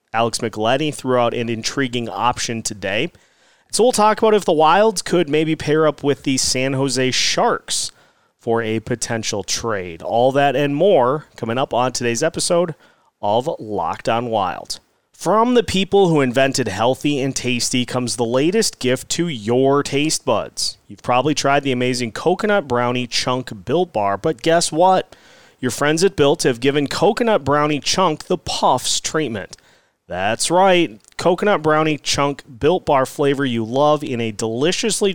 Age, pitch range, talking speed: 30-49, 125-160 Hz, 160 wpm